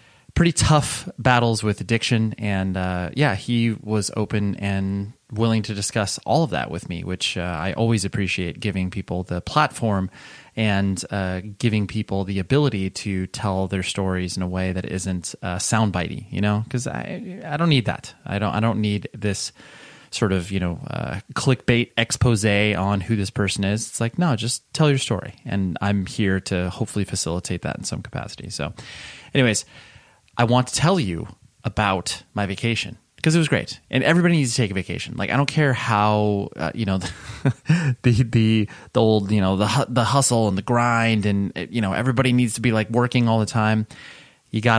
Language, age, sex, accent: English, 30-49, male, American